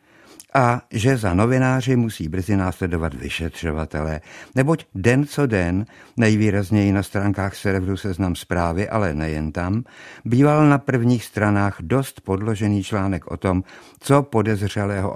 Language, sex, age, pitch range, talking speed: Czech, male, 60-79, 90-115 Hz, 125 wpm